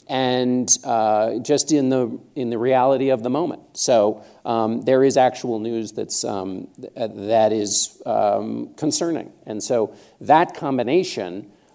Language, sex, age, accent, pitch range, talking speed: English, male, 50-69, American, 115-135 Hz, 145 wpm